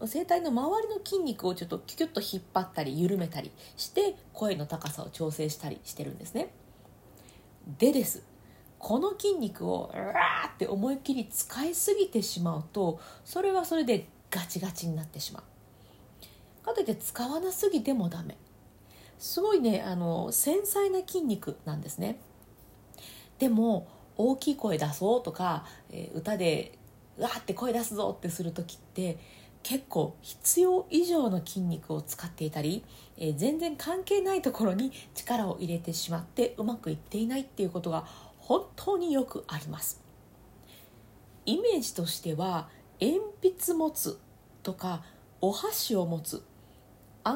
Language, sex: Japanese, female